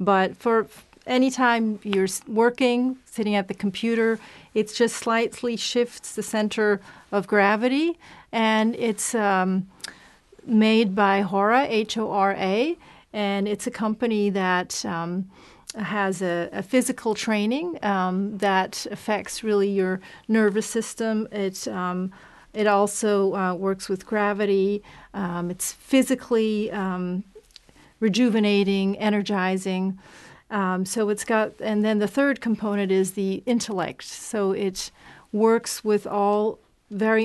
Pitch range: 195-225 Hz